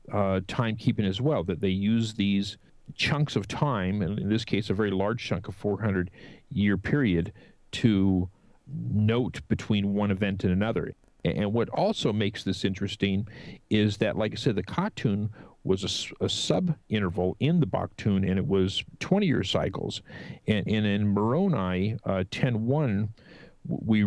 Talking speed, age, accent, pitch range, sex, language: 160 wpm, 50-69, American, 95-120 Hz, male, English